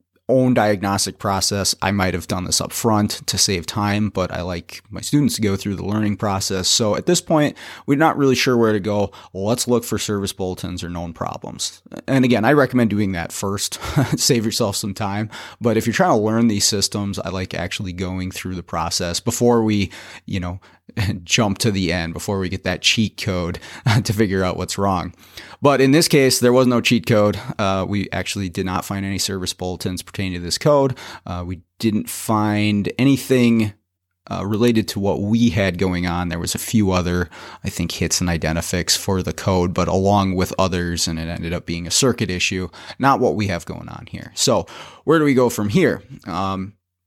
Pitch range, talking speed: 90-115 Hz, 210 wpm